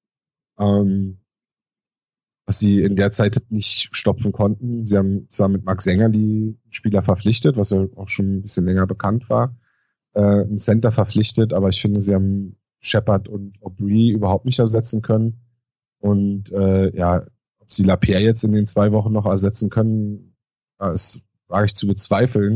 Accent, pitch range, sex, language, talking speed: German, 100-115 Hz, male, German, 160 wpm